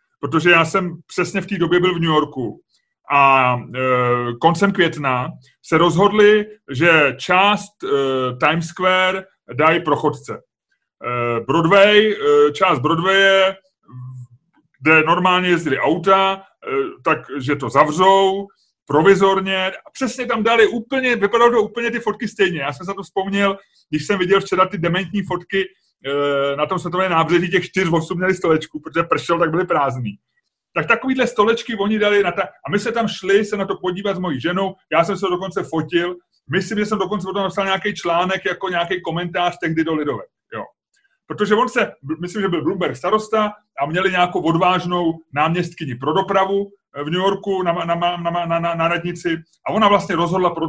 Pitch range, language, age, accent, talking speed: 160-200 Hz, Czech, 30-49, native, 175 wpm